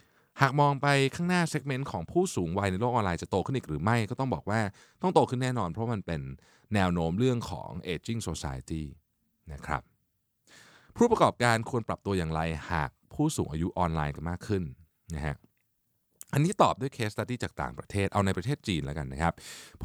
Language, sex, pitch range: Thai, male, 85-120 Hz